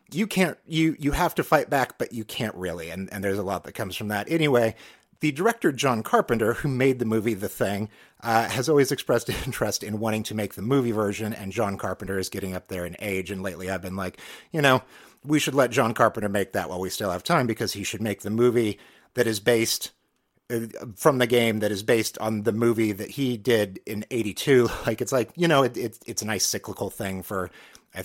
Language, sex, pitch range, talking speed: English, male, 100-130 Hz, 235 wpm